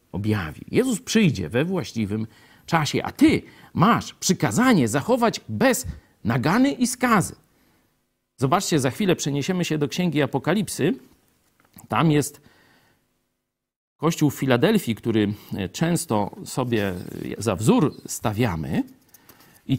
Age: 50-69